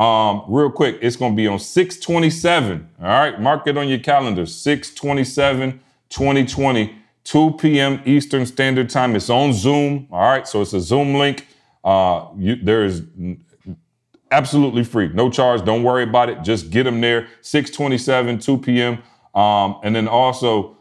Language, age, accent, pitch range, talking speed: English, 30-49, American, 105-135 Hz, 160 wpm